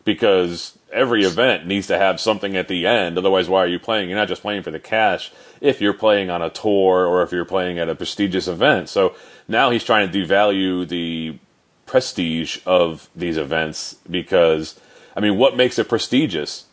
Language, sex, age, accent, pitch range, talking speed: English, male, 30-49, American, 90-110 Hz, 195 wpm